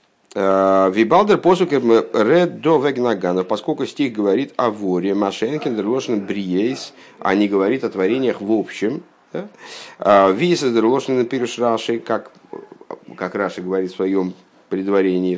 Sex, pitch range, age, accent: male, 95-135 Hz, 50-69, native